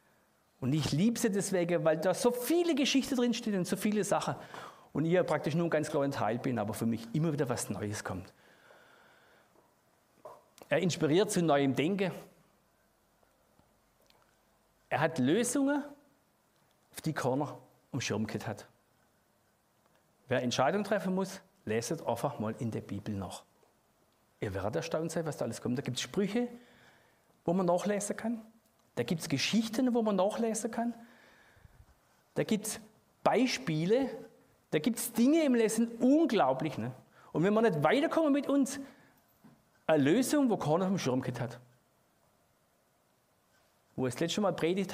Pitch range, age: 135-225 Hz, 50-69